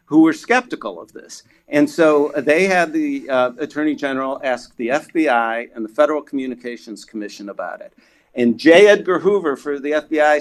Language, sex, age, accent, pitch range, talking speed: English, male, 50-69, American, 125-175 Hz, 175 wpm